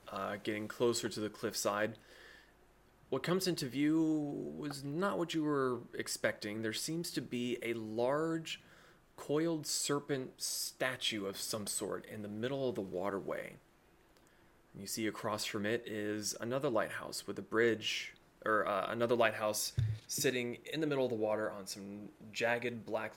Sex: male